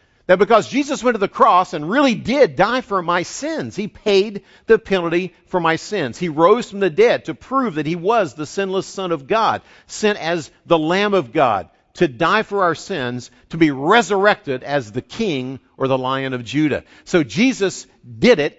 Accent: American